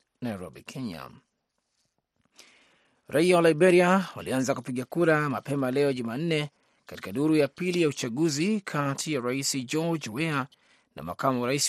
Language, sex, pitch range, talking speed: Swahili, male, 130-160 Hz, 125 wpm